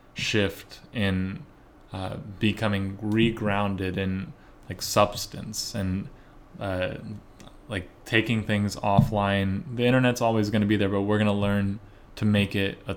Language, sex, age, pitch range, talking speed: English, male, 20-39, 95-110 Hz, 140 wpm